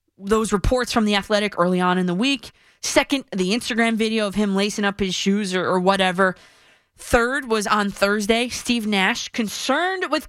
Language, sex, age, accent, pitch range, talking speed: English, female, 20-39, American, 165-240 Hz, 180 wpm